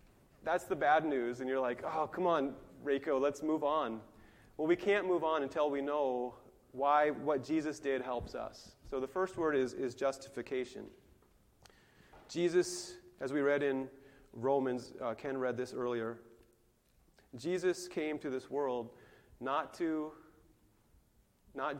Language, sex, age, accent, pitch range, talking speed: English, male, 30-49, American, 120-150 Hz, 150 wpm